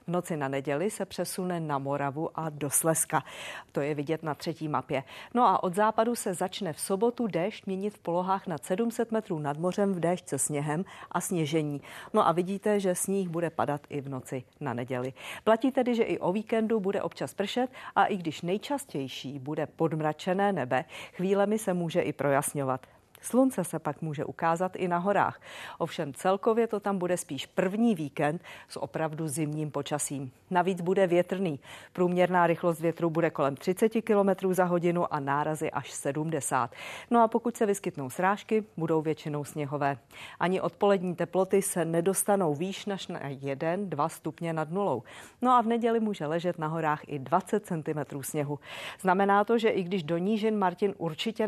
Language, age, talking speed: Czech, 40-59, 175 wpm